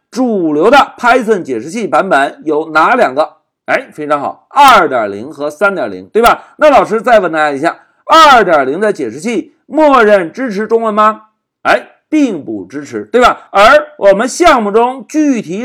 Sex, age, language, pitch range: male, 50-69, Chinese, 210-310 Hz